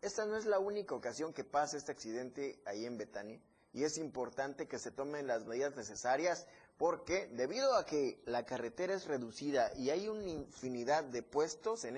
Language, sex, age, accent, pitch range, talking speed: Spanish, male, 30-49, Mexican, 130-170 Hz, 185 wpm